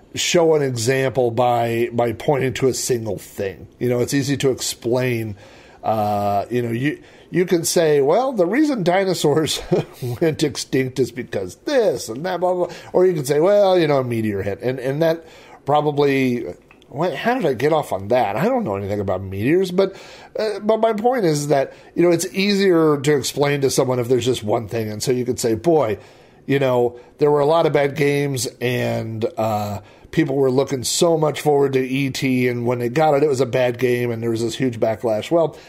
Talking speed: 215 wpm